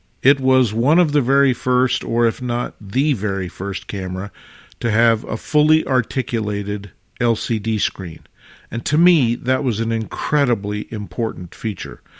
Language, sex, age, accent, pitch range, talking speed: English, male, 50-69, American, 105-135 Hz, 150 wpm